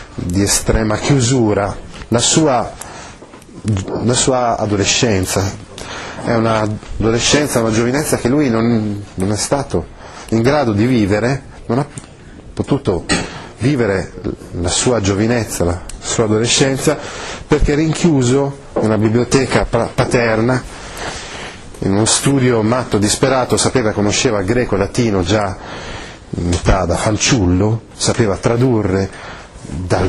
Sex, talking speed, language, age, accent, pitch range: male, 120 wpm, Italian, 30-49, native, 100-125 Hz